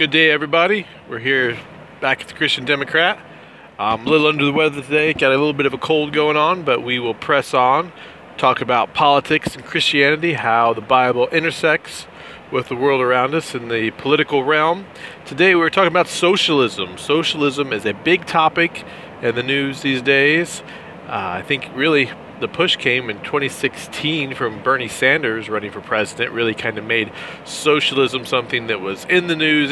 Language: English